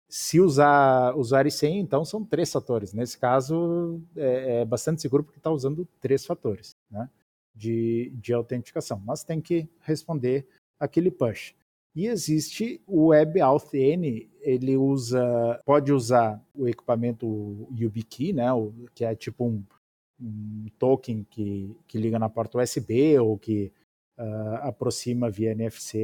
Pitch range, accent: 110-135 Hz, Brazilian